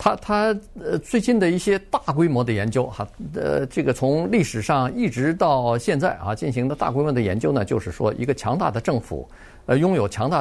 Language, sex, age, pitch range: Chinese, male, 50-69, 120-180 Hz